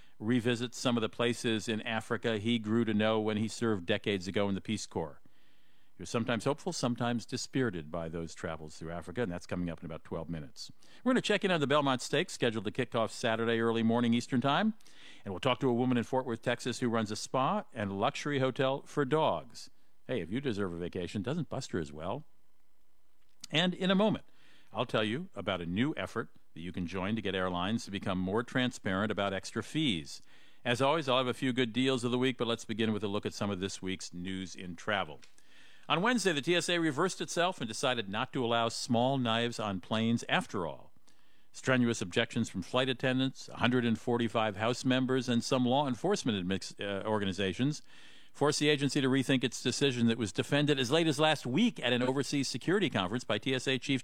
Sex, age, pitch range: male, 50-69, 105-135 Hz